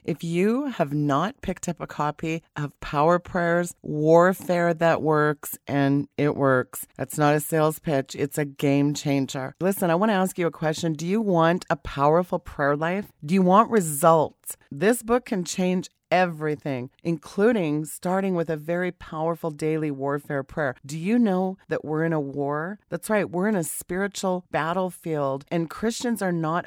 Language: English